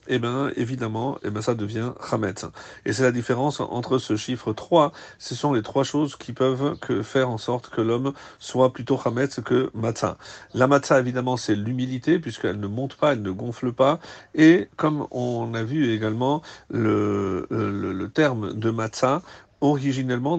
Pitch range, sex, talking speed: 110-145 Hz, male, 175 wpm